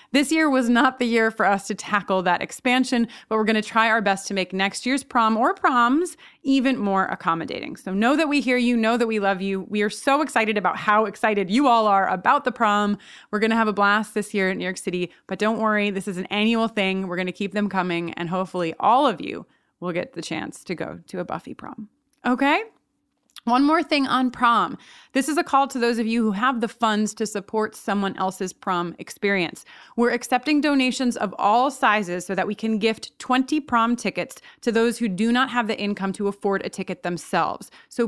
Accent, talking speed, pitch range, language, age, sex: American, 230 wpm, 200-255 Hz, English, 30-49, female